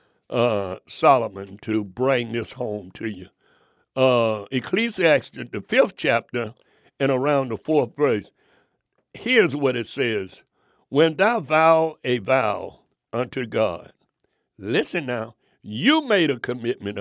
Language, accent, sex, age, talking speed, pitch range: English, American, male, 60-79, 125 wpm, 130-195 Hz